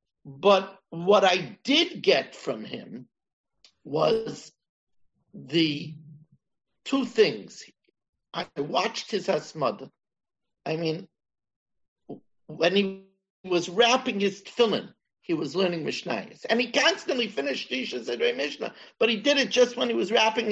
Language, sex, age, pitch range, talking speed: English, male, 60-79, 160-230 Hz, 125 wpm